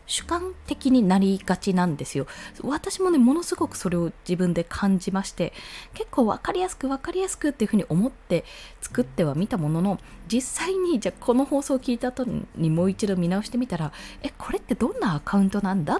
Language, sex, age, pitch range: Japanese, female, 20-39, 165-245 Hz